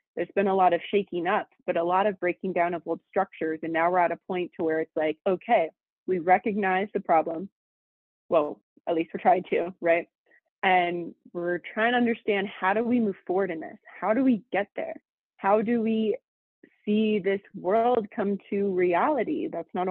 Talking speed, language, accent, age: 200 wpm, English, American, 20-39